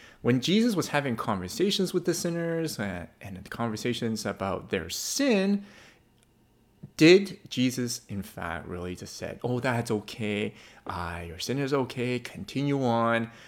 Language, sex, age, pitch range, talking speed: English, male, 30-49, 105-165 Hz, 145 wpm